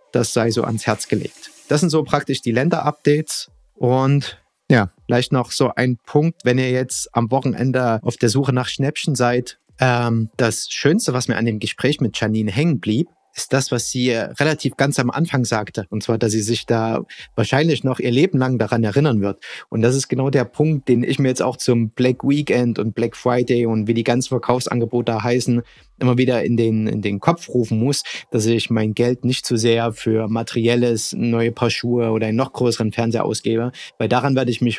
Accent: German